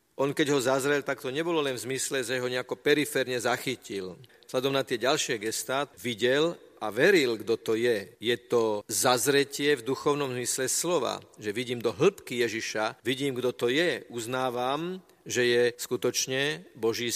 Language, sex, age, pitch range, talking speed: Slovak, male, 40-59, 115-145 Hz, 165 wpm